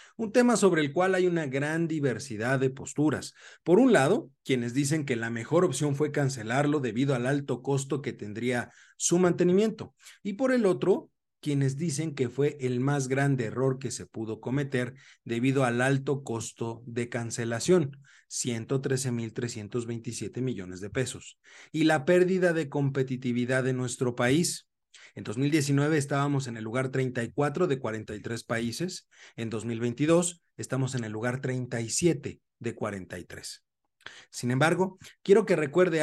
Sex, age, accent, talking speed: male, 40-59, Mexican, 145 wpm